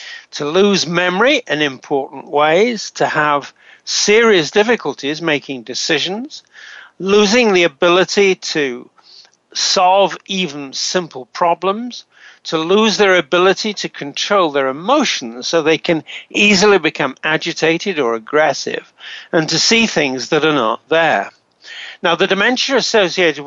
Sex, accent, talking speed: male, British, 125 wpm